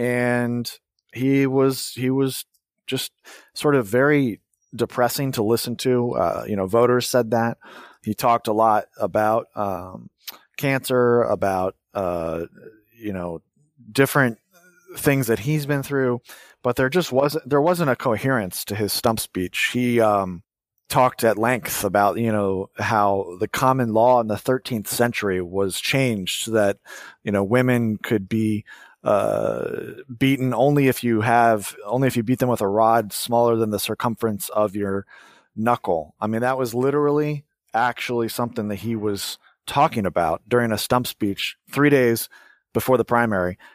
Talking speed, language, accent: 155 wpm, English, American